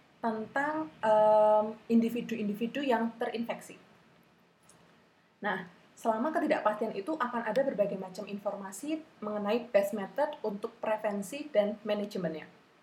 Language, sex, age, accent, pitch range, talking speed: Indonesian, female, 20-39, native, 205-255 Hz, 100 wpm